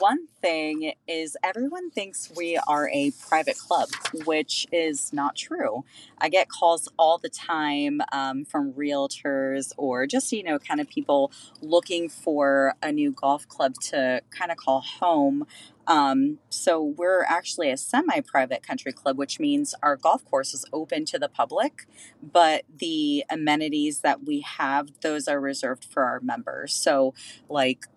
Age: 30-49